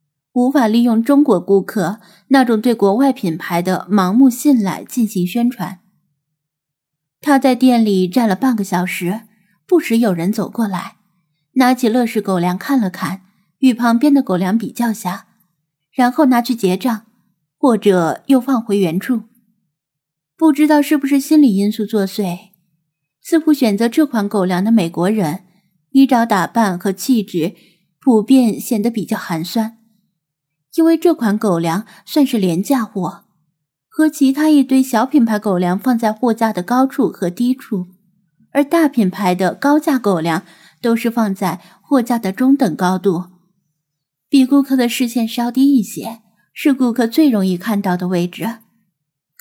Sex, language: female, Chinese